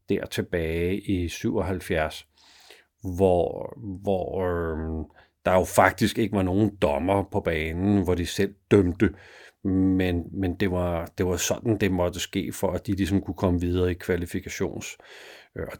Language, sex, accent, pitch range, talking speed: Danish, male, native, 95-115 Hz, 145 wpm